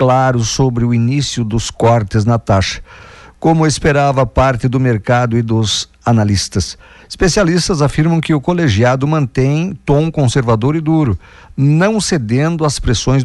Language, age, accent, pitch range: Portuguese, 50-69, Brazilian, 115-150 Hz